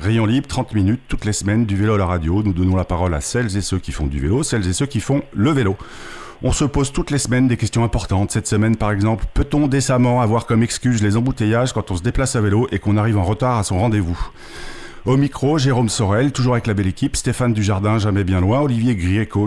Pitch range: 100-125 Hz